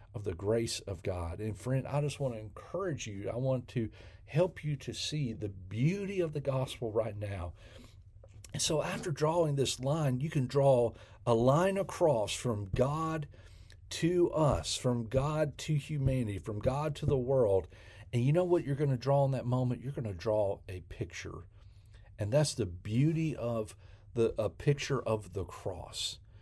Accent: American